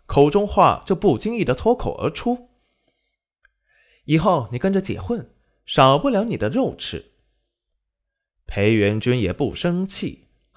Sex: male